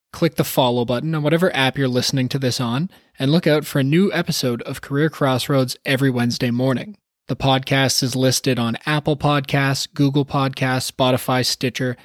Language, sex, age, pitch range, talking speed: English, male, 20-39, 125-150 Hz, 180 wpm